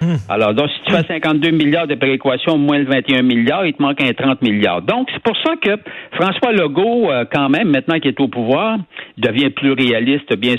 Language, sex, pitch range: French, male, 135-180 Hz